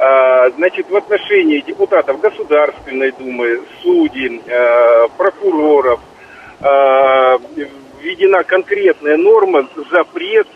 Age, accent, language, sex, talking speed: 50-69, native, Russian, male, 70 wpm